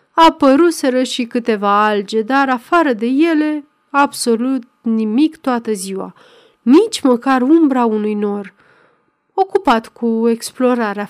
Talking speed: 110 wpm